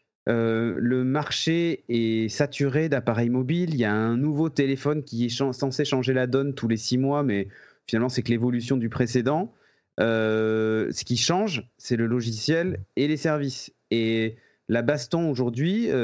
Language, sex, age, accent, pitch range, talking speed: French, male, 30-49, French, 120-160 Hz, 170 wpm